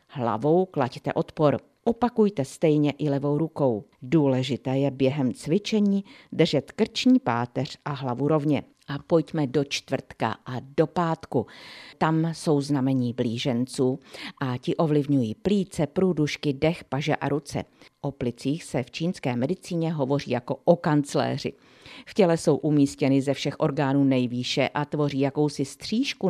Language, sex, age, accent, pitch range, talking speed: Czech, female, 50-69, native, 135-165 Hz, 135 wpm